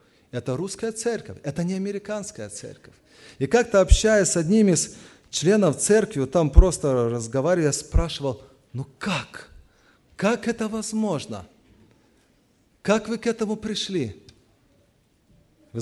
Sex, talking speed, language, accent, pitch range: male, 115 wpm, Russian, native, 155-240 Hz